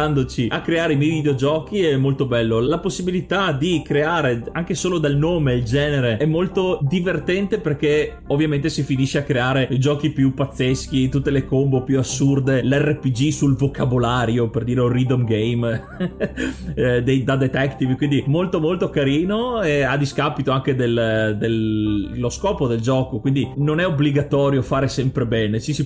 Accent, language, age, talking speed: native, Italian, 30-49, 155 wpm